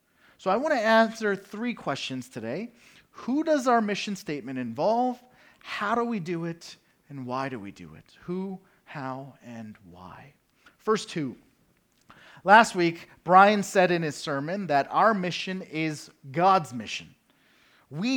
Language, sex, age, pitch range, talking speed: English, male, 30-49, 160-235 Hz, 150 wpm